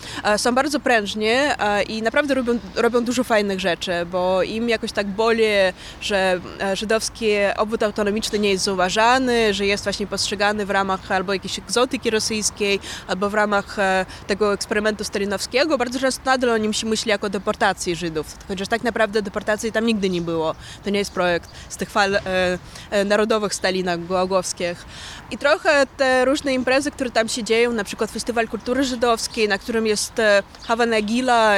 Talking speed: 160 wpm